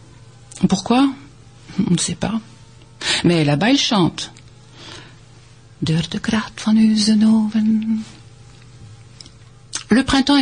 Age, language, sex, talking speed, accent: 50-69, French, female, 65 wpm, French